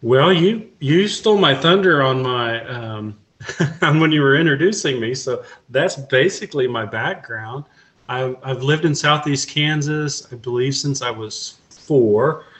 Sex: male